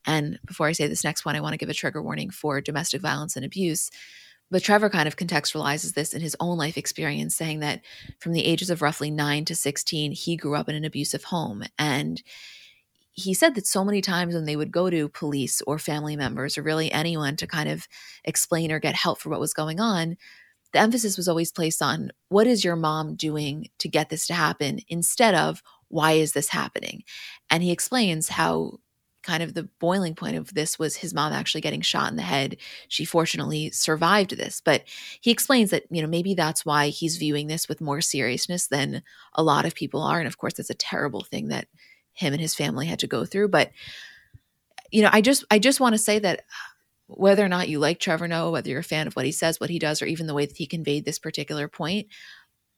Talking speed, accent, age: 225 wpm, American, 30-49